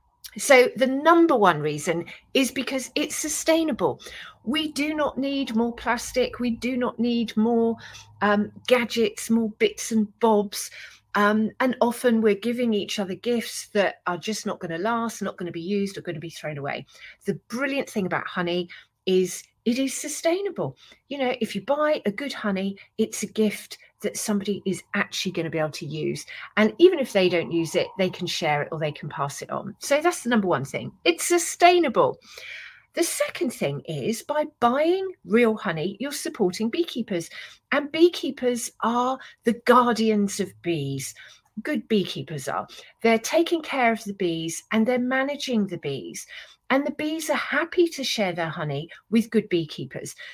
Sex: female